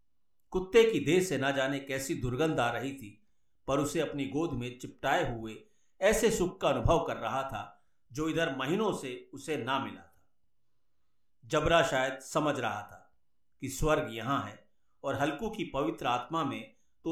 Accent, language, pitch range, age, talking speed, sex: native, Hindi, 130-180 Hz, 50-69, 170 wpm, male